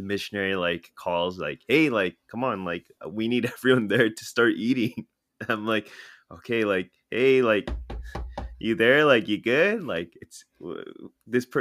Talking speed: 155 wpm